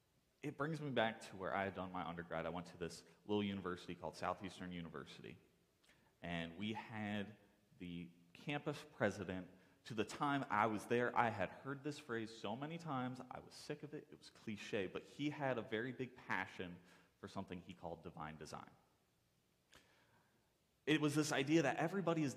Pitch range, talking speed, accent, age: 95-150 Hz, 180 wpm, American, 30-49